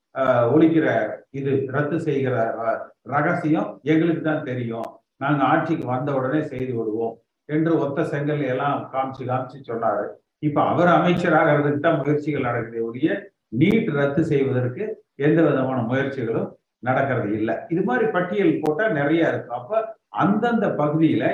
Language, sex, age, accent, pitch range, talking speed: Tamil, male, 50-69, native, 135-170 Hz, 120 wpm